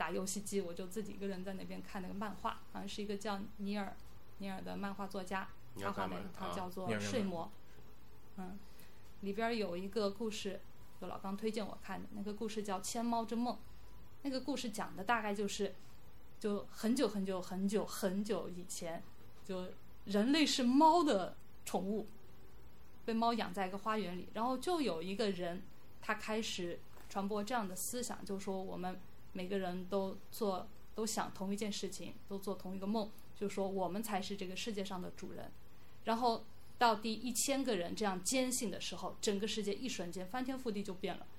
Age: 20-39